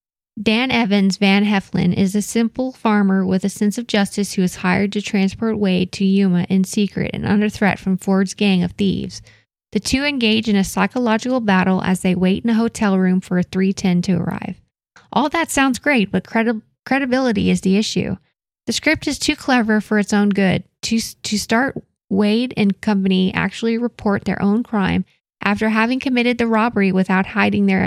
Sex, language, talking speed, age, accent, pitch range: female, English, 185 wpm, 10-29, American, 190-225 Hz